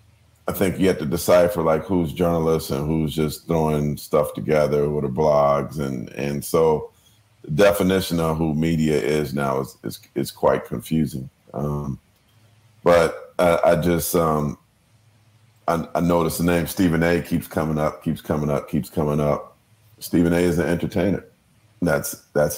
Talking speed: 165 wpm